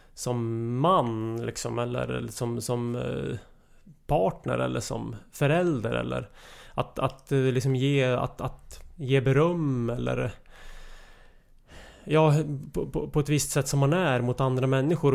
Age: 30-49